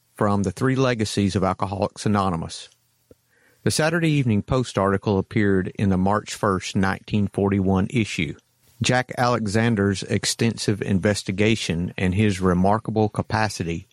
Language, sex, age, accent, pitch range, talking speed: English, male, 50-69, American, 100-120 Hz, 115 wpm